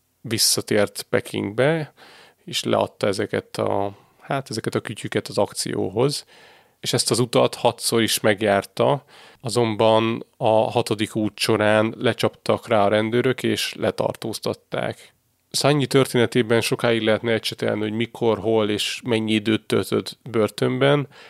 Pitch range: 105-120 Hz